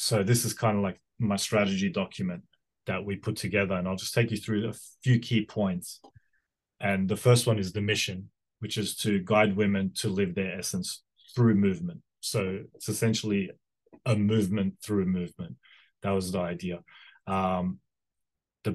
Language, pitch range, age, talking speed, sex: English, 95-110 Hz, 20-39, 175 wpm, male